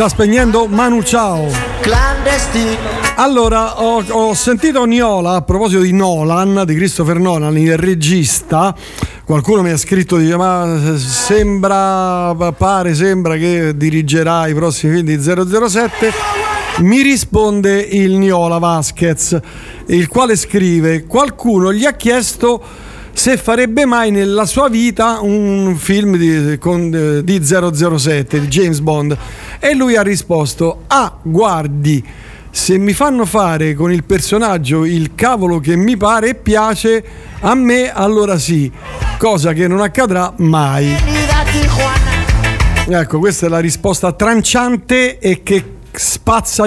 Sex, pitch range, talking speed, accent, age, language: male, 160-225 Hz, 125 wpm, native, 50-69, Italian